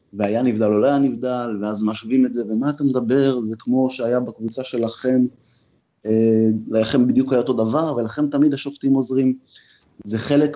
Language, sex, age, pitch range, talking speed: Hebrew, male, 30-49, 110-135 Hz, 165 wpm